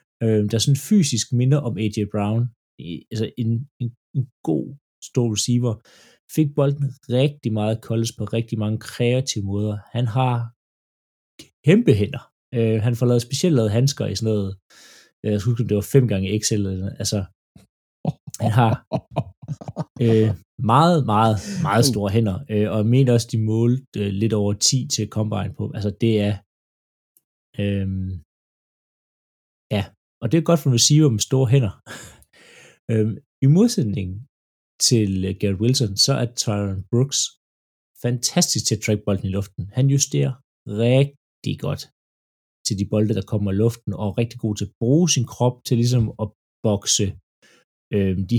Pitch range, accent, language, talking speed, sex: 105-130 Hz, native, Danish, 150 wpm, male